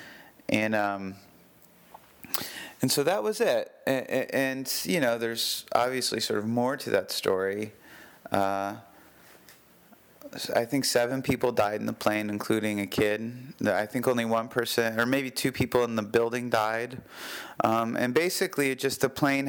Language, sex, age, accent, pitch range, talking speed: English, male, 30-49, American, 105-125 Hz, 155 wpm